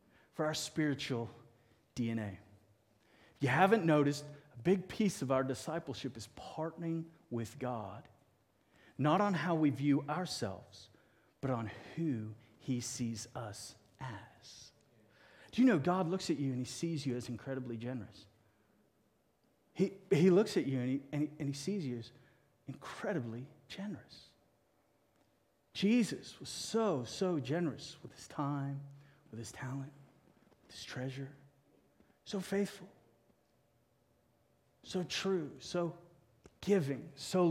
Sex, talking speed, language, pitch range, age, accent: male, 130 wpm, English, 115-165 Hz, 40-59, American